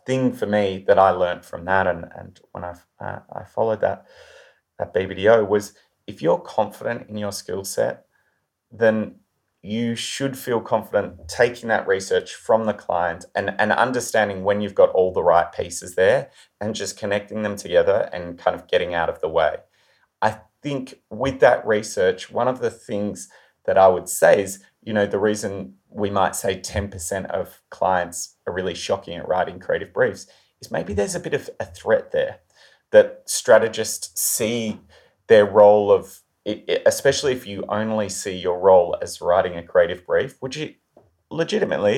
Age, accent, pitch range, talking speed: 30-49, Australian, 100-135 Hz, 175 wpm